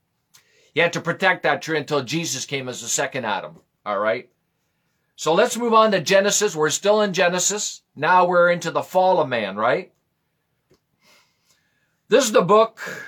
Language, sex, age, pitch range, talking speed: English, male, 50-69, 155-195 Hz, 170 wpm